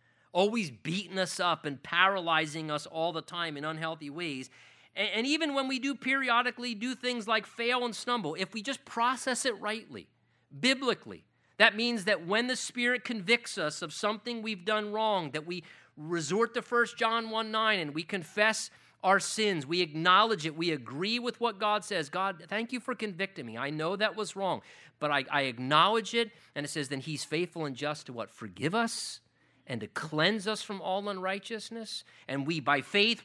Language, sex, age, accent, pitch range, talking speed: English, male, 40-59, American, 155-220 Hz, 190 wpm